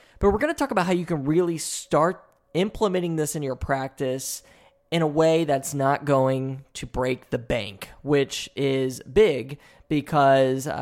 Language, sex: English, male